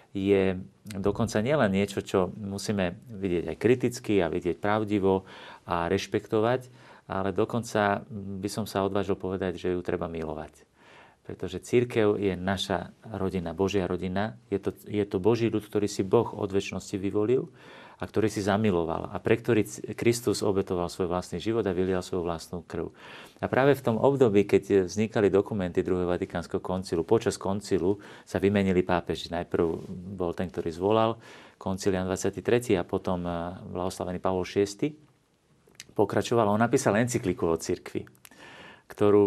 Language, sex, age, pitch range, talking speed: Slovak, male, 40-59, 95-105 Hz, 150 wpm